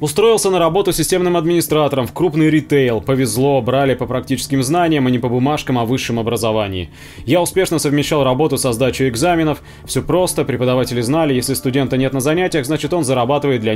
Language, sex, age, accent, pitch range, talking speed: Russian, male, 20-39, native, 130-165 Hz, 175 wpm